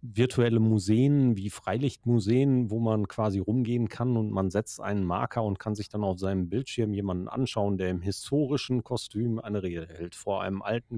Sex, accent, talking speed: male, German, 180 wpm